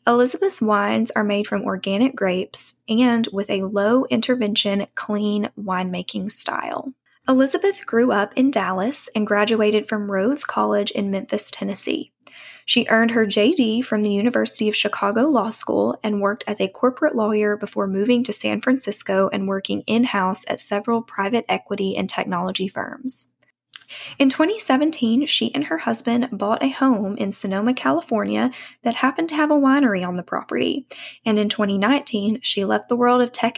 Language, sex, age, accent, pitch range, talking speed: English, female, 10-29, American, 200-250 Hz, 160 wpm